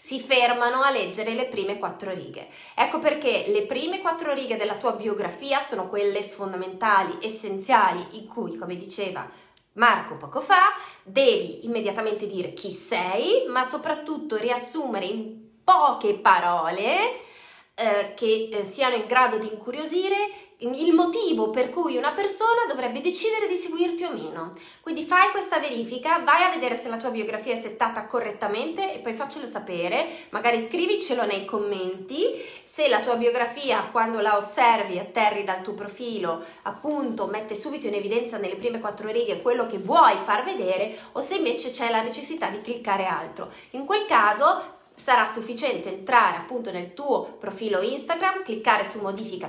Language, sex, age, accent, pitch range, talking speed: Italian, female, 30-49, native, 210-320 Hz, 155 wpm